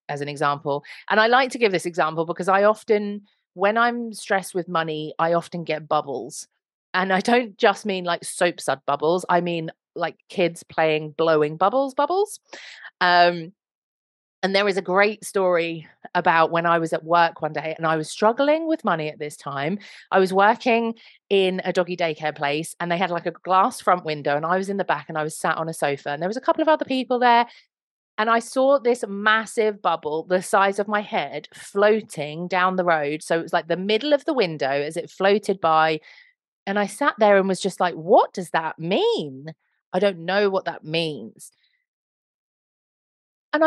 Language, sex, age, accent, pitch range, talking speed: English, female, 30-49, British, 160-215 Hz, 205 wpm